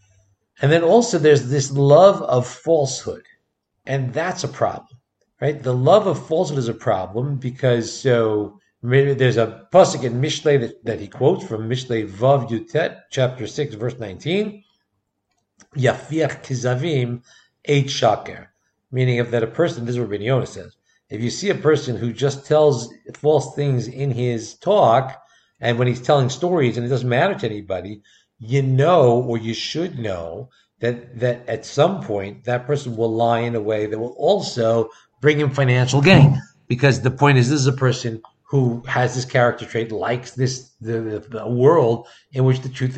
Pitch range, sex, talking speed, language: 115-140 Hz, male, 170 wpm, English